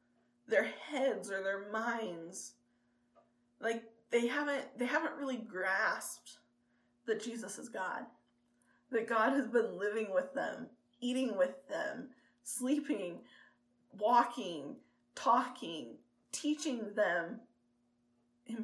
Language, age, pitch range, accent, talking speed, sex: English, 20-39, 190-270 Hz, American, 105 wpm, female